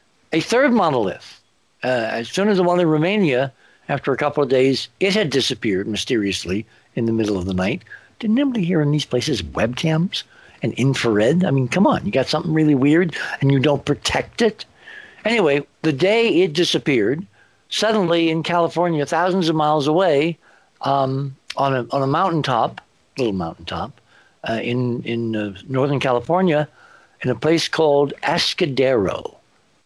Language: English